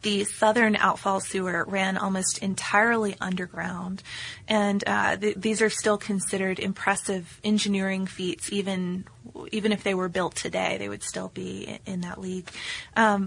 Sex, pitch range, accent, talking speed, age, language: female, 190-215 Hz, American, 155 wpm, 20-39, English